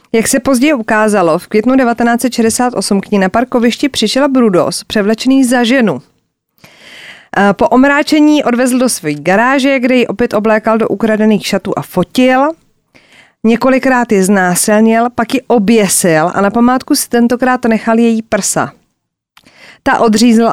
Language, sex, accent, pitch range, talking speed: Czech, female, native, 205-250 Hz, 135 wpm